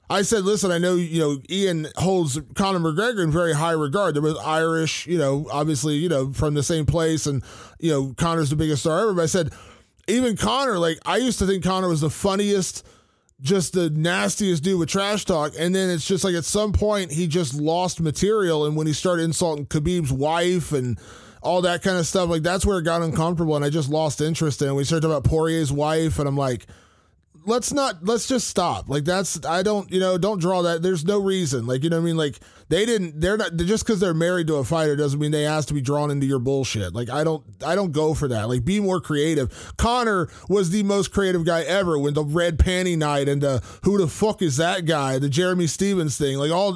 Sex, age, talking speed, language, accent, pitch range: male, 20-39, 240 wpm, English, American, 145-185 Hz